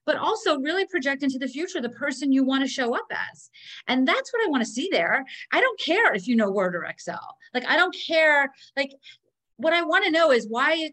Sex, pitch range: female, 195-275 Hz